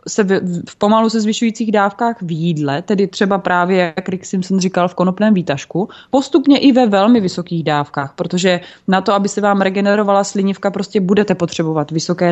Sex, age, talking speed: female, 20-39, 185 wpm